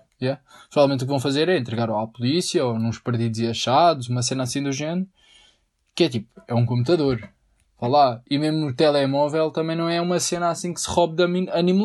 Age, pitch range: 20-39, 120-170 Hz